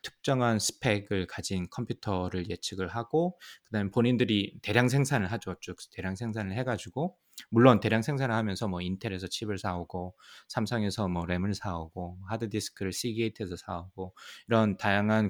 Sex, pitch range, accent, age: male, 95-125 Hz, native, 20-39